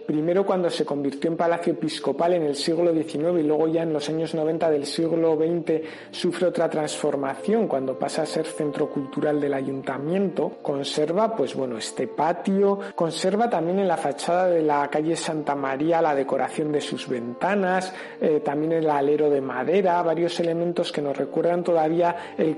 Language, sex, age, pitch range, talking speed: Spanish, male, 50-69, 150-180 Hz, 175 wpm